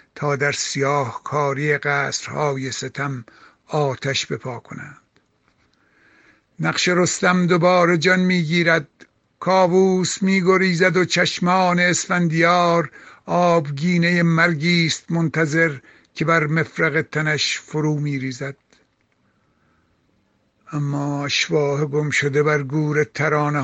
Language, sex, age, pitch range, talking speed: Persian, male, 60-79, 150-175 Hz, 95 wpm